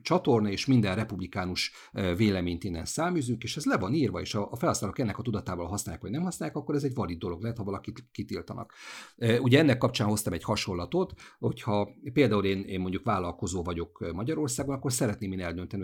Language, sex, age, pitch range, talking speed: Hungarian, male, 50-69, 90-110 Hz, 185 wpm